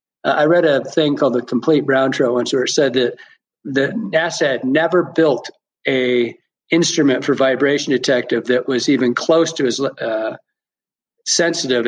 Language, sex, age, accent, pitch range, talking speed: English, male, 50-69, American, 130-205 Hz, 160 wpm